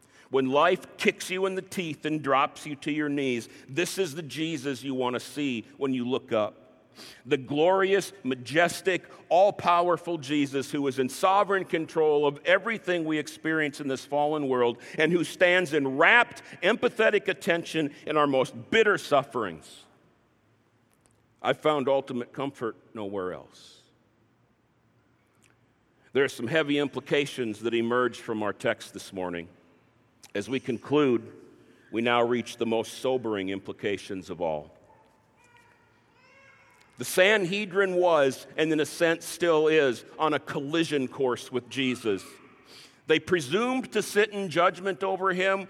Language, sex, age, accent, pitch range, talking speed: English, male, 50-69, American, 125-170 Hz, 140 wpm